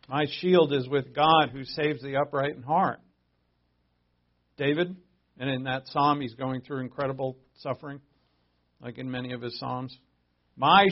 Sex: male